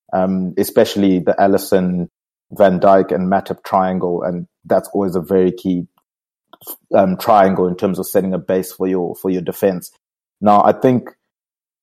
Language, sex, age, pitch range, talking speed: English, male, 30-49, 95-100 Hz, 155 wpm